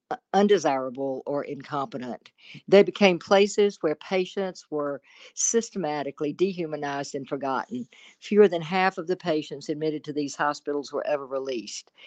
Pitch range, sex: 145-175 Hz, female